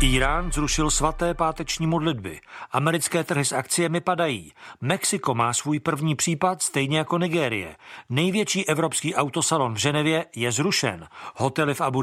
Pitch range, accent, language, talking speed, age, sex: 135-165 Hz, native, Czech, 140 wpm, 40-59, male